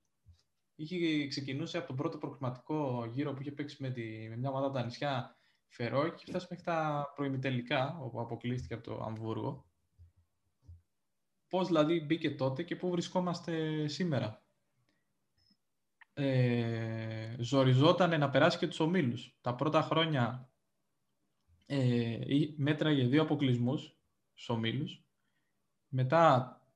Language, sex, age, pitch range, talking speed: Greek, male, 20-39, 125-160 Hz, 120 wpm